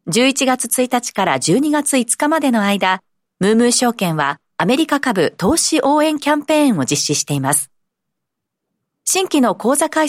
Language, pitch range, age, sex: Japanese, 180-275 Hz, 40-59, female